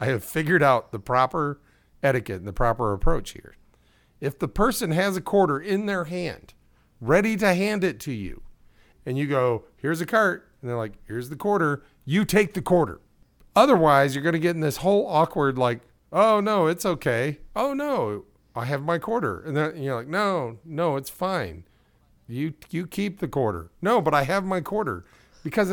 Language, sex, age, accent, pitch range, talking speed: English, male, 50-69, American, 120-175 Hz, 195 wpm